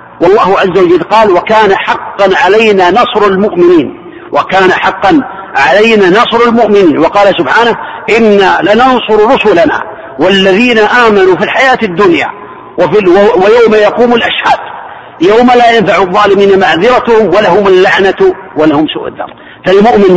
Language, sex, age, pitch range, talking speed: Arabic, male, 50-69, 195-245 Hz, 115 wpm